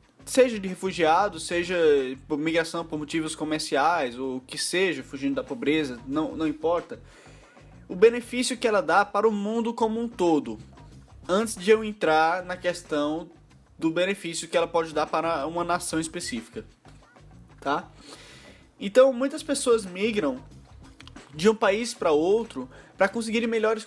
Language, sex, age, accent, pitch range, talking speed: Portuguese, male, 20-39, Brazilian, 155-215 Hz, 145 wpm